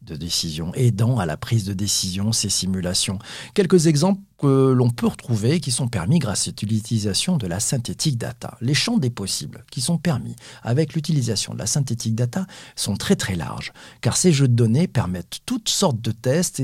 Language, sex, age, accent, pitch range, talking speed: French, male, 50-69, French, 110-155 Hz, 190 wpm